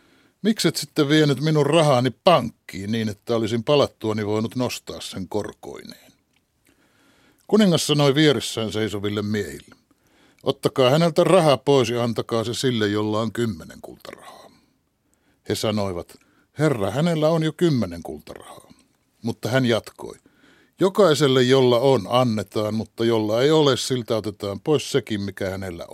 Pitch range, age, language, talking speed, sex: 105-145 Hz, 60-79, Finnish, 130 wpm, male